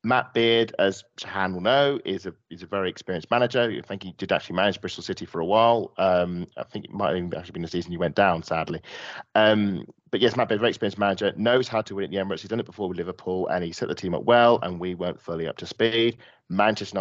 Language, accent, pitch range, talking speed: English, British, 90-110 Hz, 265 wpm